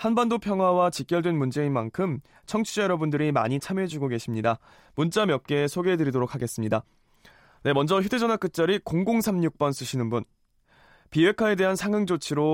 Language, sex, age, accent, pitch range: Korean, male, 20-39, native, 140-190 Hz